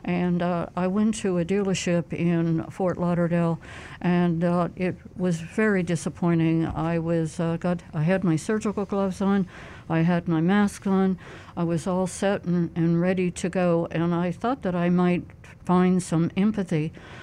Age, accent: 60-79, American